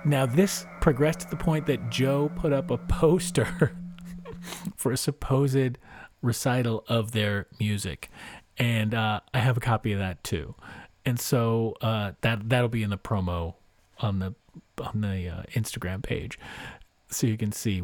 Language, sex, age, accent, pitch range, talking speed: English, male, 40-59, American, 105-140 Hz, 160 wpm